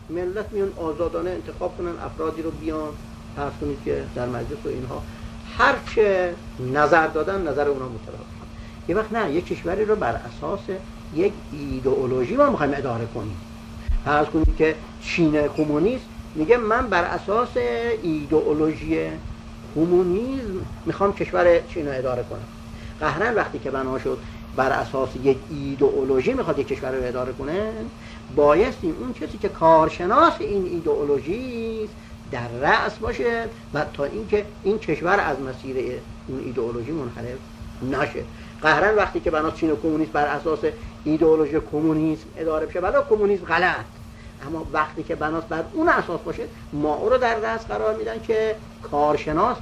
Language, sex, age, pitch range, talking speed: Persian, male, 50-69, 125-205 Hz, 150 wpm